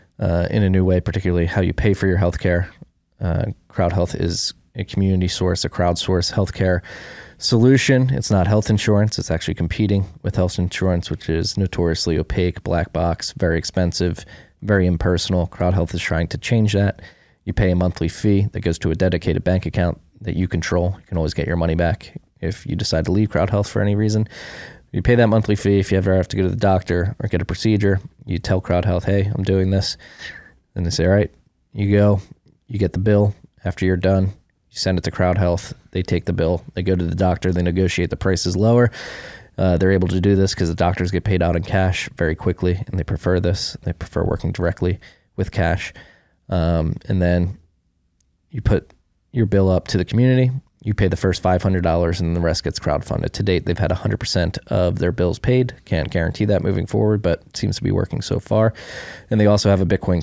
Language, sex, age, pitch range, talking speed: English, male, 20-39, 85-105 Hz, 215 wpm